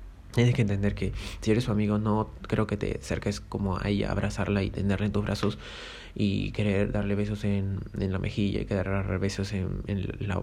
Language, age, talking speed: Spanish, 20-39, 215 wpm